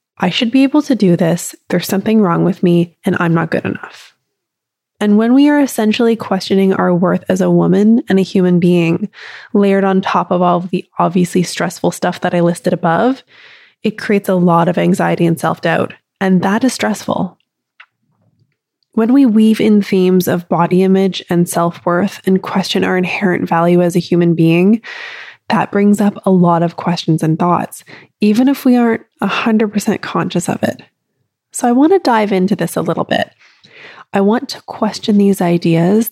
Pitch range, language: 175-215 Hz, English